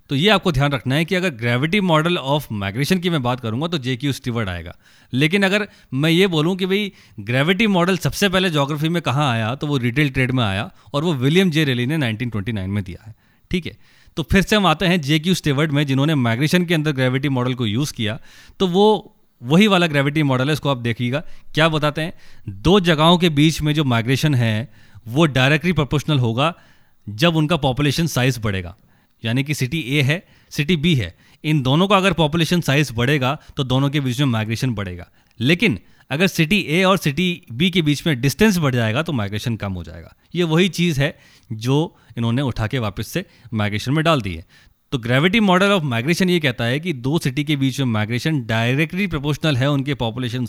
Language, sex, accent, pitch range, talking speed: Hindi, male, native, 120-165 Hz, 210 wpm